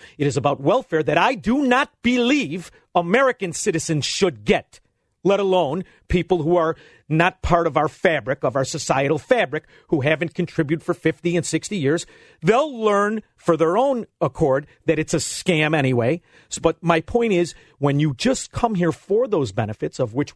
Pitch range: 150-195 Hz